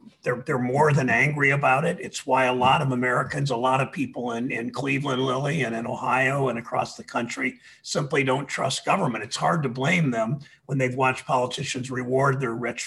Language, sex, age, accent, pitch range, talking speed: English, male, 50-69, American, 125-140 Hz, 205 wpm